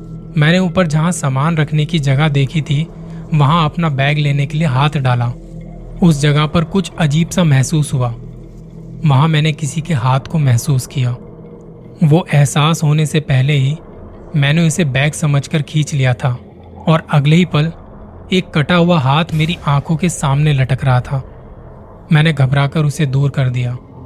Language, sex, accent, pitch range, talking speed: Hindi, male, native, 135-160 Hz, 165 wpm